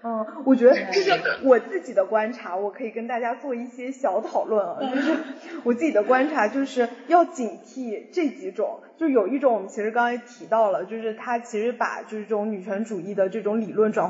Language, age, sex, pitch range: Chinese, 20-39, female, 210-290 Hz